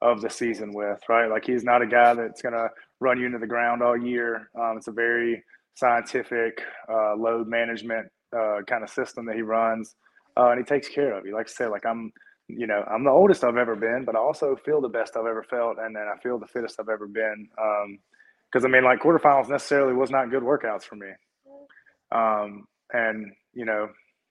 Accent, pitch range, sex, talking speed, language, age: American, 110-130 Hz, male, 220 wpm, English, 20-39